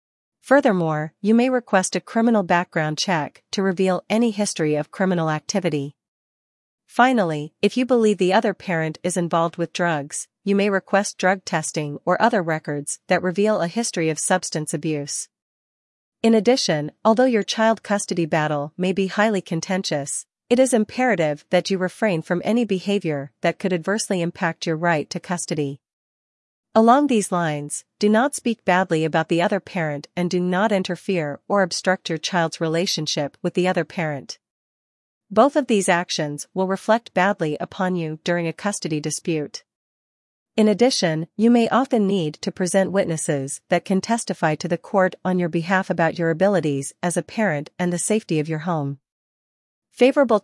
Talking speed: 165 wpm